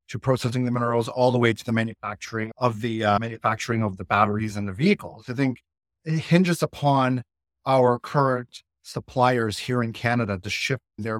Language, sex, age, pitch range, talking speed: English, male, 30-49, 100-125 Hz, 180 wpm